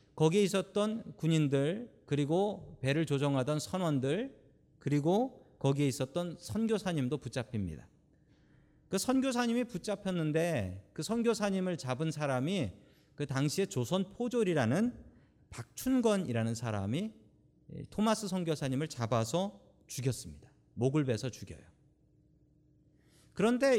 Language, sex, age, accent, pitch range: Korean, male, 40-59, native, 115-190 Hz